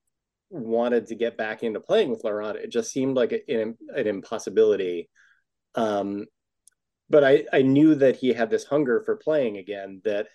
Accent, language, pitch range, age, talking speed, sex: American, English, 105-145 Hz, 30-49, 175 wpm, male